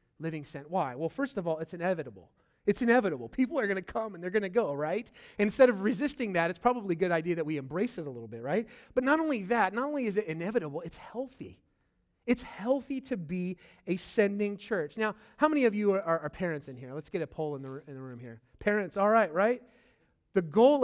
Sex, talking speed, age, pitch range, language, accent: male, 240 wpm, 30-49, 185-230 Hz, English, American